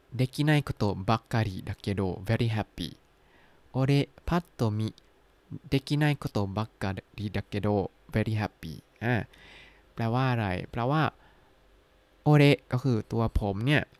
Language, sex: Thai, male